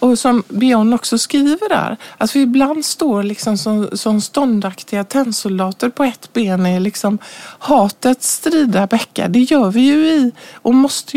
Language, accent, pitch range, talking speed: Swedish, native, 205-265 Hz, 160 wpm